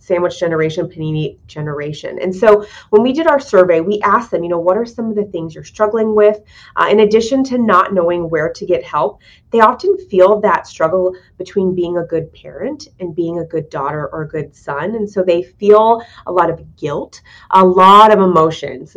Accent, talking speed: American, 210 wpm